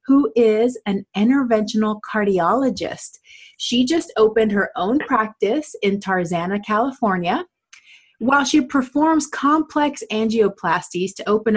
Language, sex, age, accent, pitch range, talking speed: English, female, 30-49, American, 180-235 Hz, 110 wpm